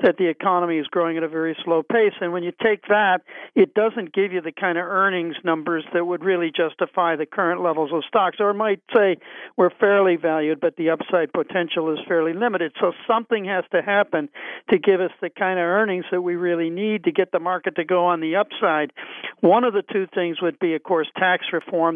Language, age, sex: English, 50-69, male